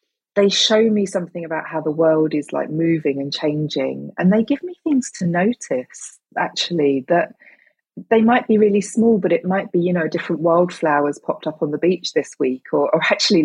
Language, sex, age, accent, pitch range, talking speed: English, female, 30-49, British, 160-225 Hz, 200 wpm